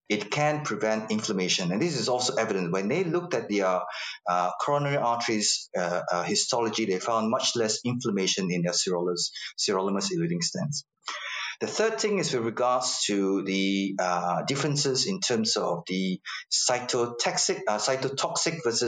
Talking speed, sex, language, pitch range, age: 155 wpm, male, English, 100-155 Hz, 30-49